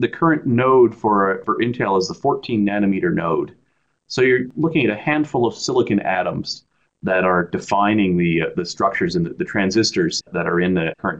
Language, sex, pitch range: English, male, 95-125 Hz